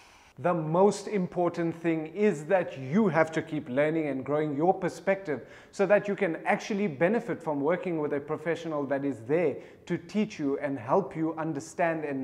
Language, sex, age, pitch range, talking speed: English, male, 30-49, 150-185 Hz, 180 wpm